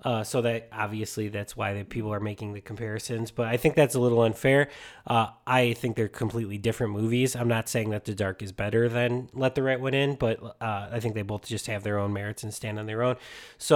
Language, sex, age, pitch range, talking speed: English, male, 20-39, 105-120 Hz, 250 wpm